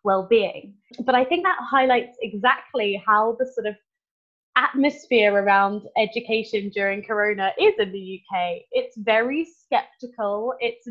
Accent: British